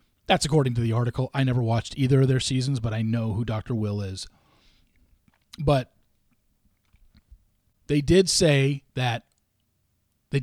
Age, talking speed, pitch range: 40-59, 145 wpm, 115-150 Hz